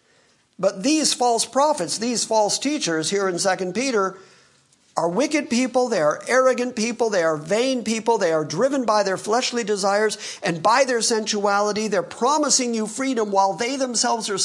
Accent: American